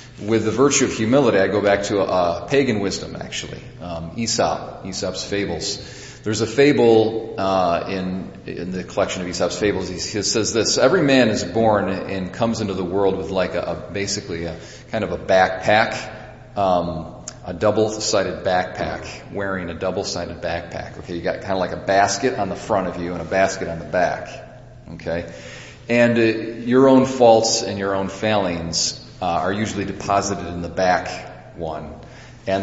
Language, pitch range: English, 85-110 Hz